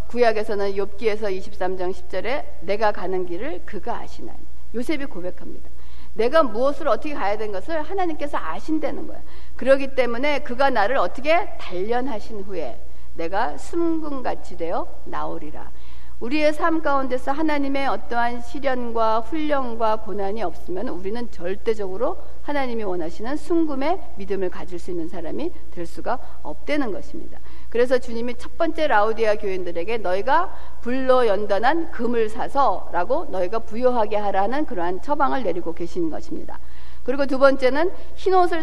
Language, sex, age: Korean, female, 60-79